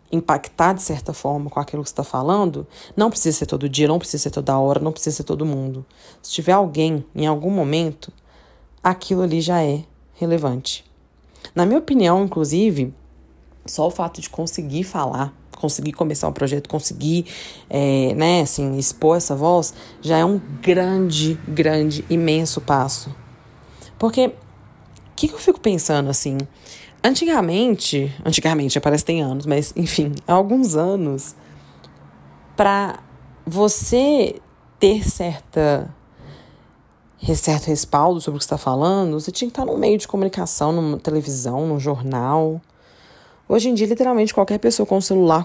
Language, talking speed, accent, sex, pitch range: Portuguese, 150 wpm, Brazilian, female, 145-185 Hz